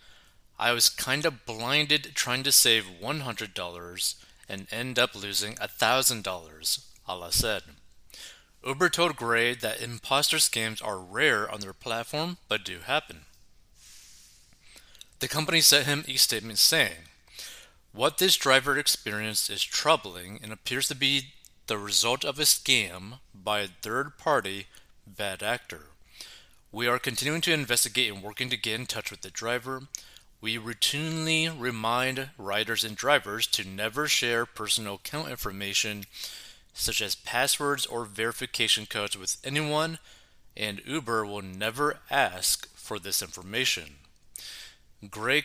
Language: English